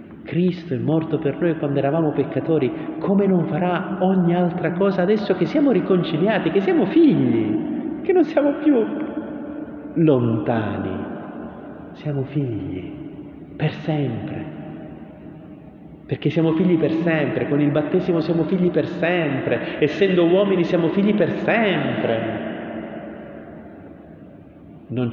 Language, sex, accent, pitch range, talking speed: Italian, male, native, 120-180 Hz, 115 wpm